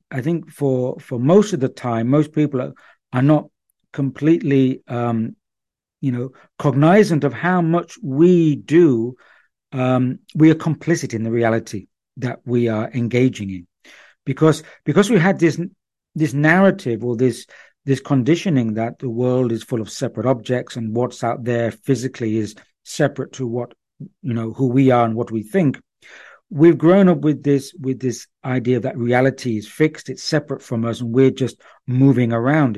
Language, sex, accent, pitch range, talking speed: English, male, British, 120-155 Hz, 170 wpm